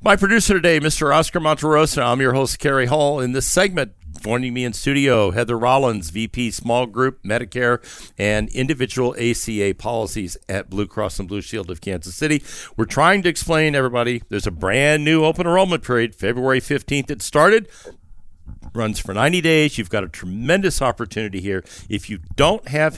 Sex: male